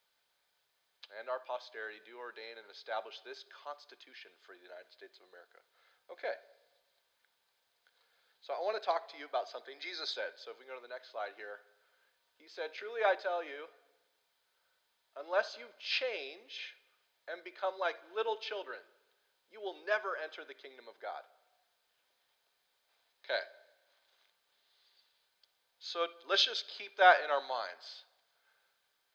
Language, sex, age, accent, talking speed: English, male, 30-49, American, 140 wpm